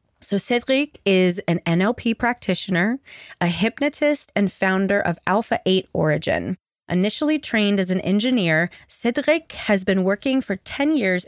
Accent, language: American, English